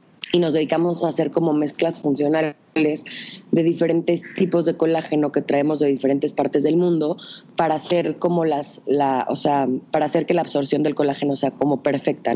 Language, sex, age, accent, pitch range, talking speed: Spanish, female, 20-39, Mexican, 145-170 Hz, 180 wpm